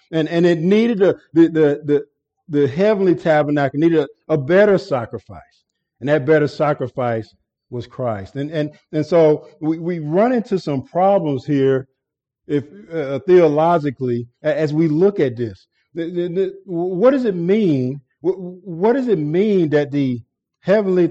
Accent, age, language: American, 50-69, English